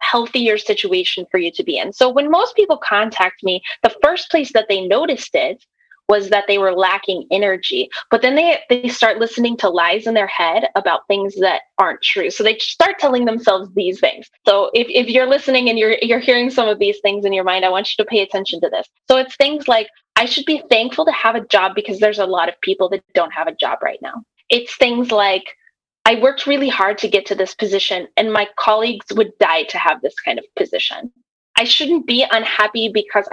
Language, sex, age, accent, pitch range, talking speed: English, female, 10-29, American, 195-250 Hz, 225 wpm